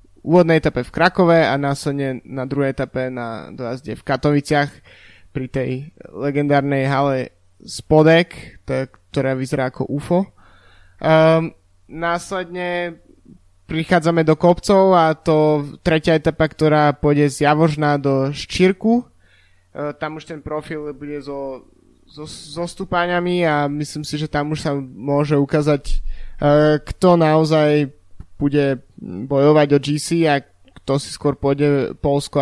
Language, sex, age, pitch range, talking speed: Slovak, male, 20-39, 135-160 Hz, 120 wpm